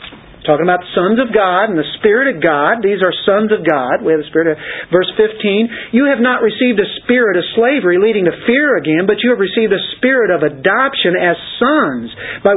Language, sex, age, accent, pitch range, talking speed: English, male, 50-69, American, 155-220 Hz, 215 wpm